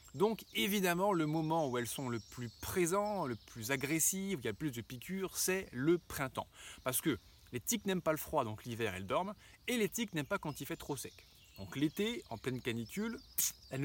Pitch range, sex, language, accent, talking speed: 120-180 Hz, male, French, French, 215 wpm